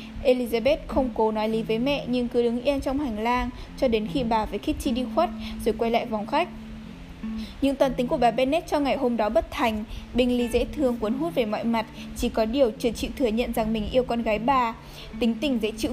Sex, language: female, Vietnamese